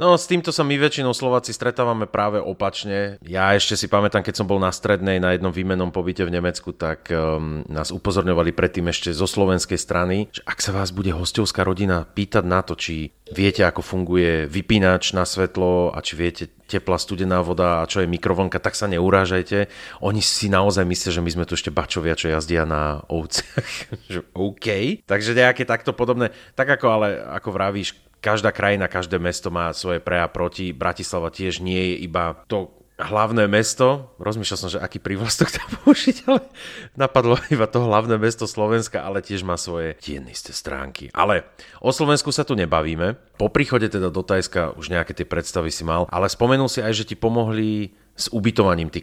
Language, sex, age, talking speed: Slovak, male, 30-49, 185 wpm